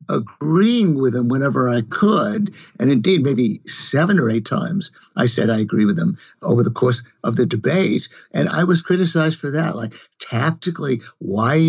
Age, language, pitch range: 60-79, English, 115-160 Hz